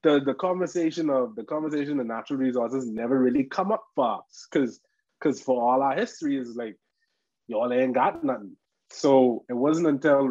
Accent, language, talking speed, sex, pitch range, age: Indian, English, 175 wpm, male, 115-140 Hz, 20-39